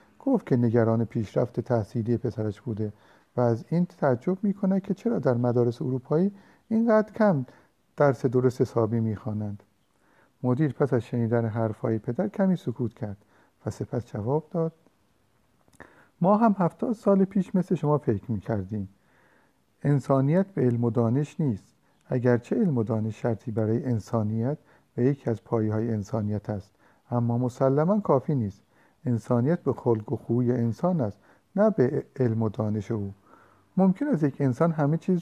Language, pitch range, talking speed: Persian, 115-165 Hz, 150 wpm